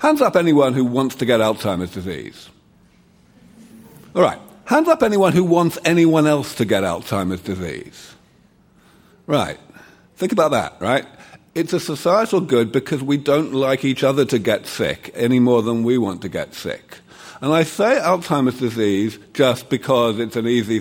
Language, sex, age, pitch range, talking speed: English, male, 50-69, 120-165 Hz, 165 wpm